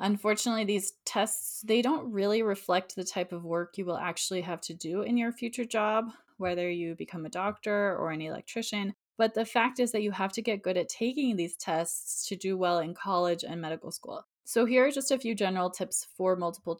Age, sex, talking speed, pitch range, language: 20-39, female, 220 wpm, 180-230 Hz, English